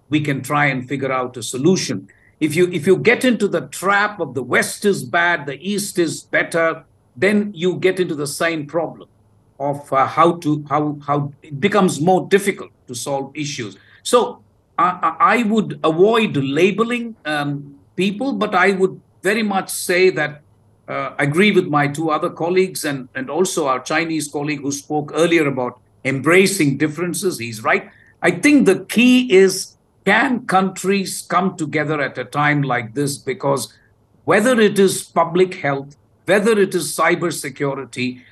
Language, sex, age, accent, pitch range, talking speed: English, male, 50-69, Indian, 140-185 Hz, 165 wpm